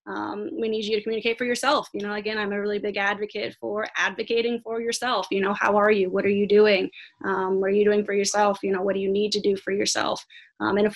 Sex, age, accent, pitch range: female, 20-39, American, 200-215 Hz